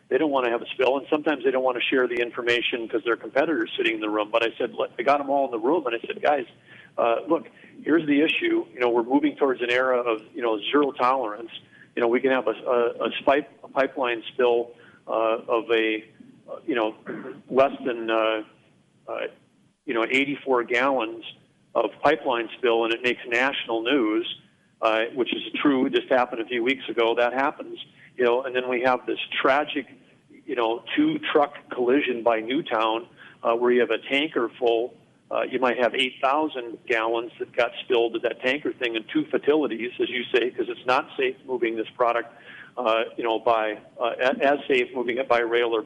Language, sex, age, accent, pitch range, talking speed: English, male, 40-59, American, 115-145 Hz, 215 wpm